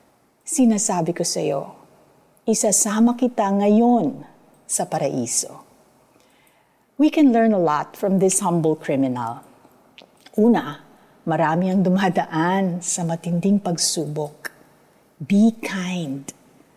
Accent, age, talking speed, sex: native, 50-69, 95 wpm, female